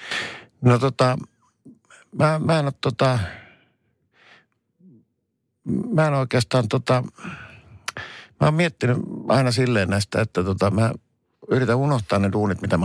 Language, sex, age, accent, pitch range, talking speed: Finnish, male, 50-69, native, 95-120 Hz, 115 wpm